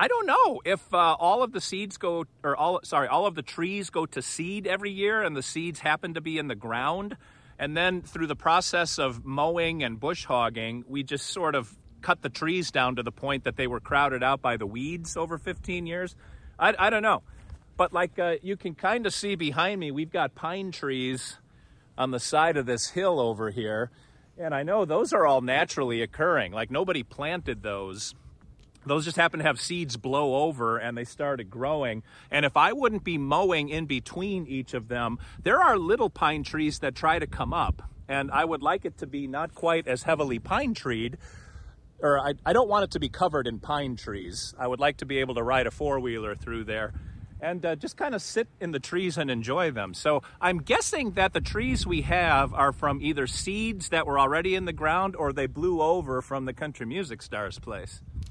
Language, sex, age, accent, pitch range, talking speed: English, male, 40-59, American, 125-175 Hz, 215 wpm